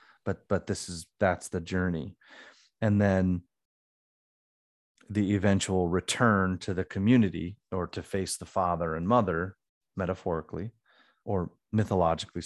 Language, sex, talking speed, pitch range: English, male, 120 wpm, 90-105 Hz